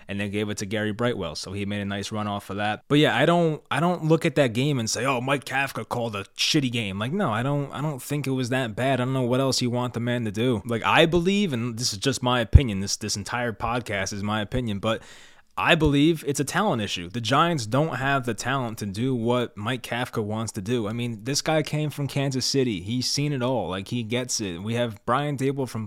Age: 20-39